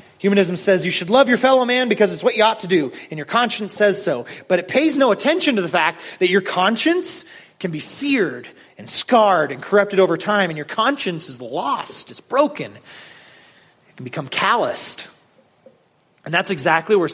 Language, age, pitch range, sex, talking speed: English, 30-49, 170-250 Hz, male, 195 wpm